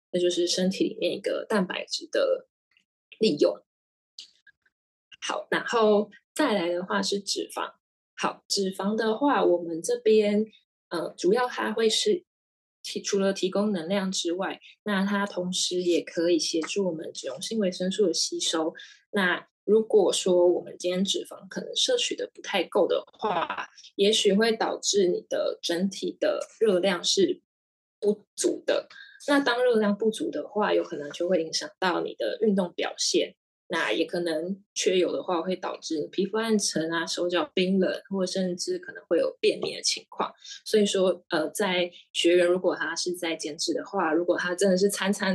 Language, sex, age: Chinese, female, 20-39